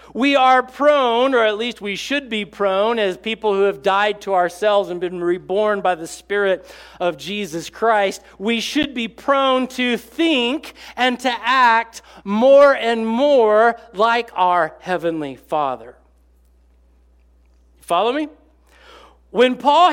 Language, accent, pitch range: English, American, 205-275 Hz